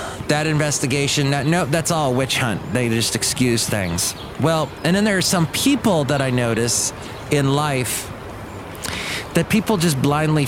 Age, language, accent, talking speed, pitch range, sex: 30-49, English, American, 160 wpm, 120-195 Hz, male